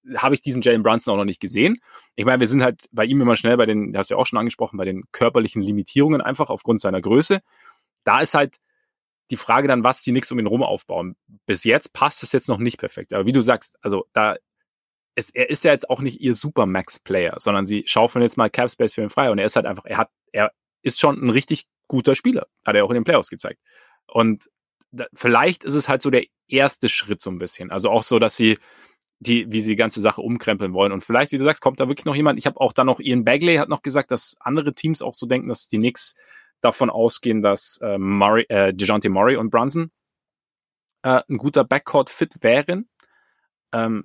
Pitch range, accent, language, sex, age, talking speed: 110-145 Hz, German, German, male, 30-49, 235 wpm